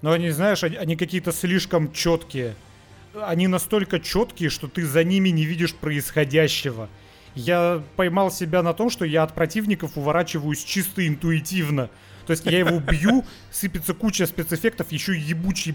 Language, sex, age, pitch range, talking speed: Russian, male, 30-49, 155-195 Hz, 150 wpm